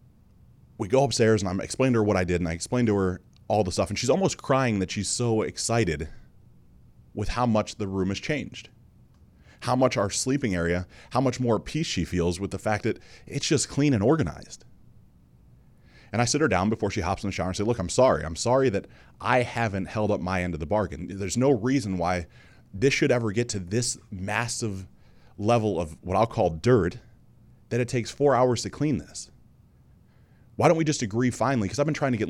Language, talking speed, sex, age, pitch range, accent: English, 220 wpm, male, 30-49, 95-125 Hz, American